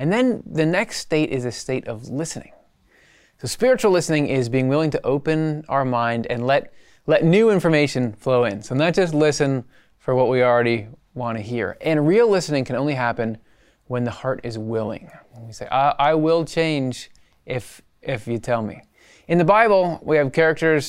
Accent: American